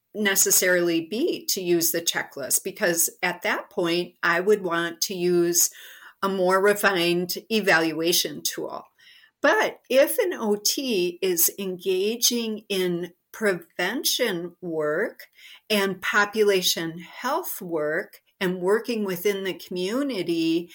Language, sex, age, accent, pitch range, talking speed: English, female, 50-69, American, 175-225 Hz, 110 wpm